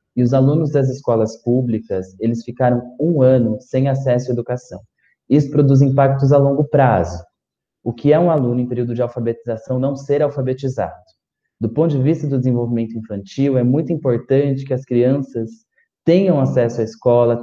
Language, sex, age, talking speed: Portuguese, male, 20-39, 170 wpm